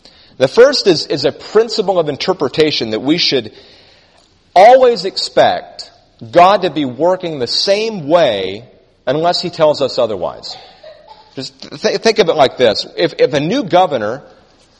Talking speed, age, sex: 145 wpm, 40-59, male